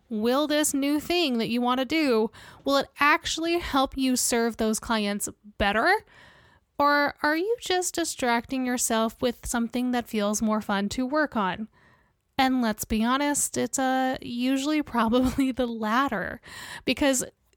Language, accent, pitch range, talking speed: English, American, 225-285 Hz, 150 wpm